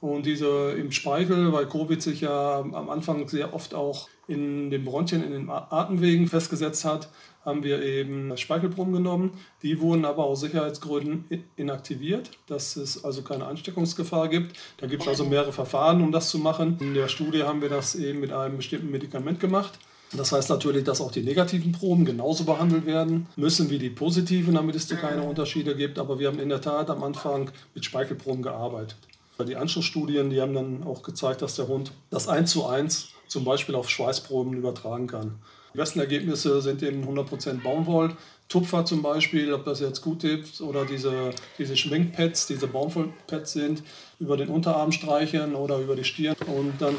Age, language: 40-59, German